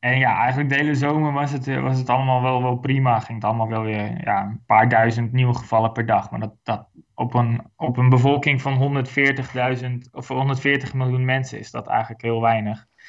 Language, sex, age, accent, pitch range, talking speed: Dutch, male, 20-39, Dutch, 120-140 Hz, 210 wpm